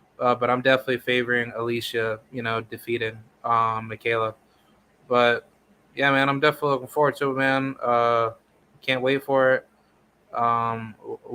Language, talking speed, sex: English, 150 wpm, male